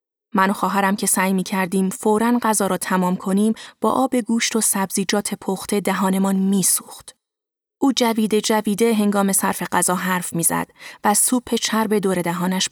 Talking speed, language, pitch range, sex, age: 155 wpm, Persian, 190-225 Hz, female, 20-39